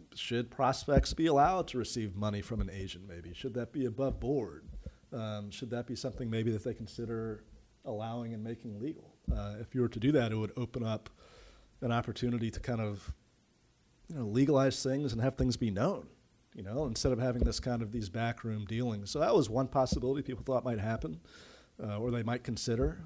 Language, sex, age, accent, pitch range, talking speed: English, male, 40-59, American, 105-125 Hz, 205 wpm